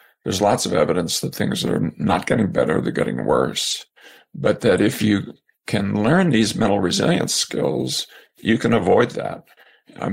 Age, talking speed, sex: 50-69, 165 wpm, male